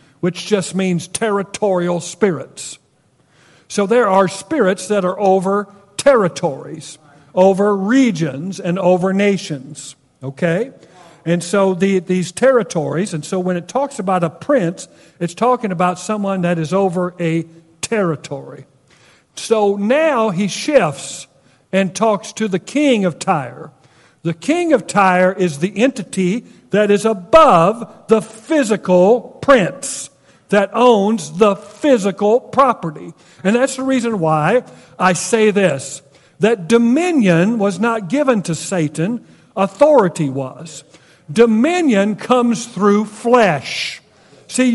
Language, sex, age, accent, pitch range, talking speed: English, male, 50-69, American, 170-230 Hz, 125 wpm